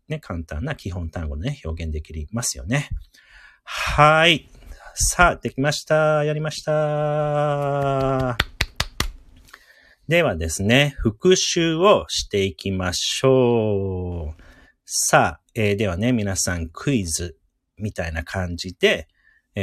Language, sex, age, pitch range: Japanese, male, 40-59, 85-130 Hz